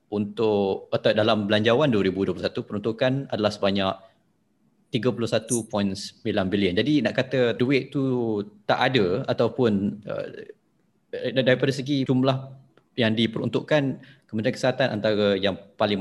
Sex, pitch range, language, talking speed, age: male, 100-130 Hz, Malay, 110 wpm, 20-39